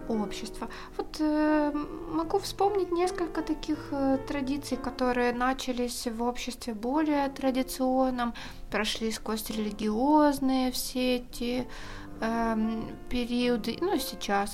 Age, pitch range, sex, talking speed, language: 20-39, 230-310 Hz, female, 95 wpm, Russian